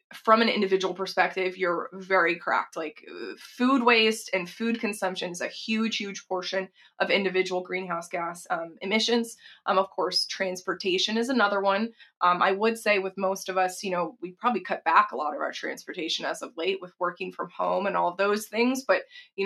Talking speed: 195 wpm